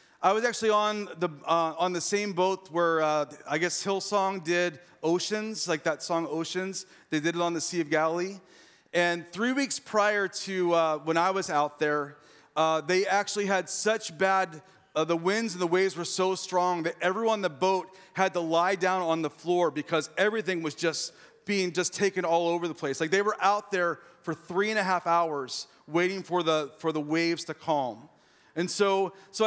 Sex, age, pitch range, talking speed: male, 30-49, 170-220 Hz, 205 wpm